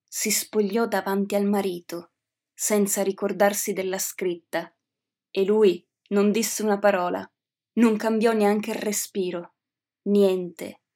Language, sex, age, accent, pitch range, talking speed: Italian, female, 20-39, native, 190-215 Hz, 115 wpm